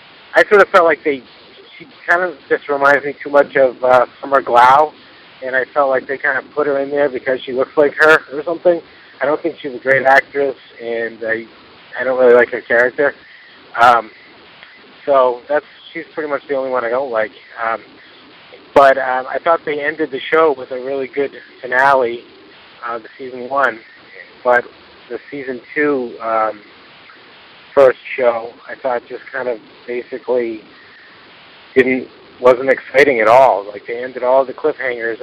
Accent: American